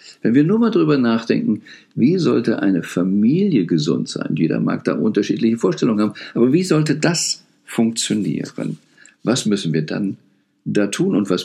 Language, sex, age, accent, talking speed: German, male, 50-69, German, 160 wpm